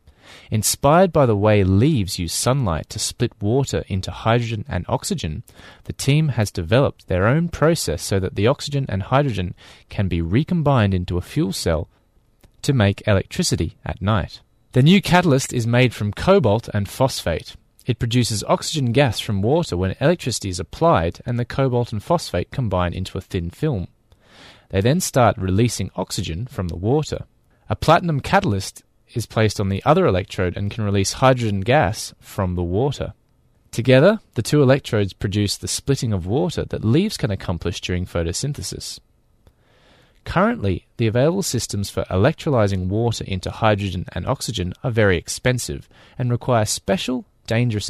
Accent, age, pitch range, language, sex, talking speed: Australian, 30-49, 95-135 Hz, English, male, 160 wpm